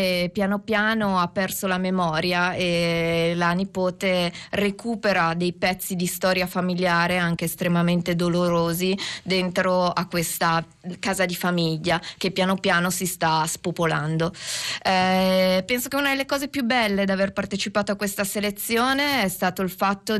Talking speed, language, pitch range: 145 wpm, Italian, 175-205 Hz